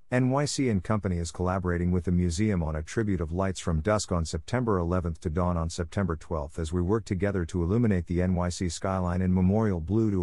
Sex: male